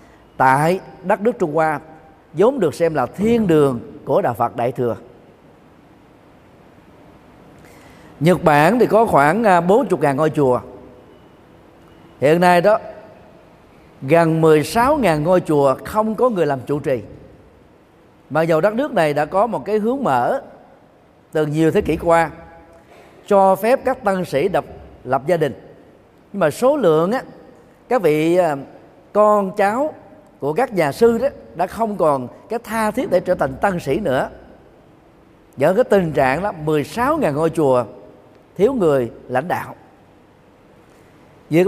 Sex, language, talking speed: male, Vietnamese, 145 wpm